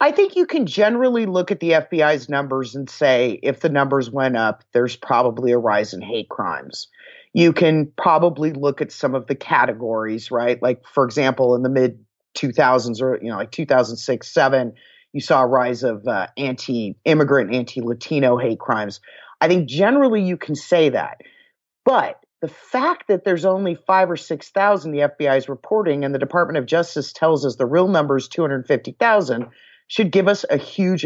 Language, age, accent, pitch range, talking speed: English, 30-49, American, 135-180 Hz, 185 wpm